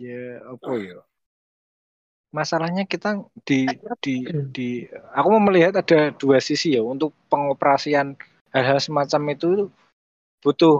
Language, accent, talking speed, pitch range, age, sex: Indonesian, native, 115 wpm, 120-145 Hz, 20-39, male